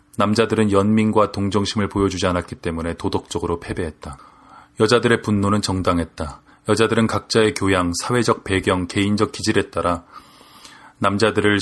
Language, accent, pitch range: Korean, native, 95-110 Hz